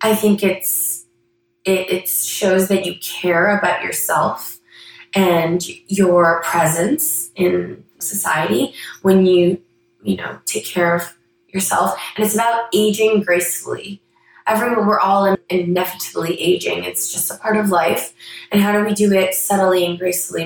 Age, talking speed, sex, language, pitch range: 20-39, 145 wpm, female, English, 175-210 Hz